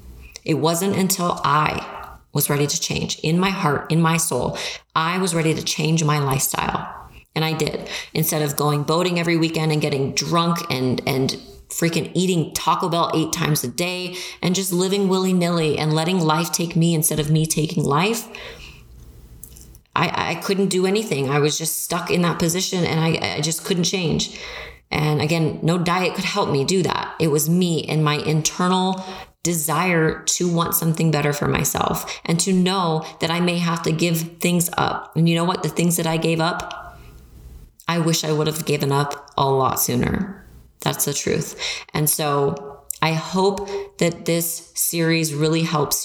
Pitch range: 150-175 Hz